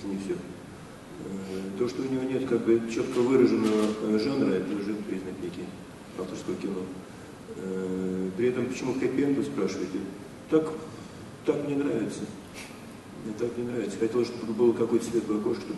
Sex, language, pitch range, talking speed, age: male, Russian, 95-120 Hz, 135 wpm, 40-59